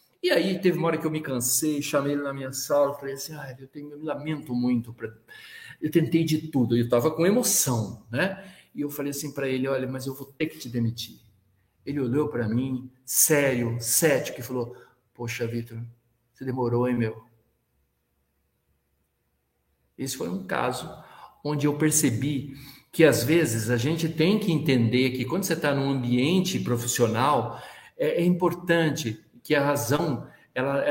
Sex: male